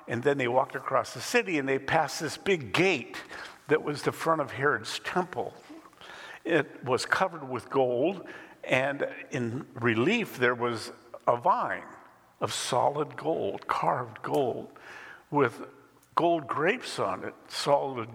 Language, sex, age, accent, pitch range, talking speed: English, male, 60-79, American, 125-165 Hz, 140 wpm